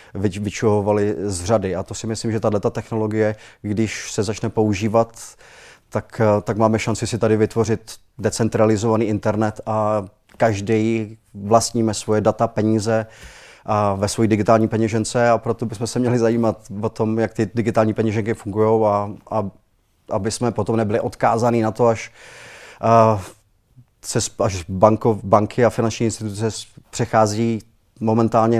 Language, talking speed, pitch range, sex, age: Czech, 135 wpm, 105-115 Hz, male, 30-49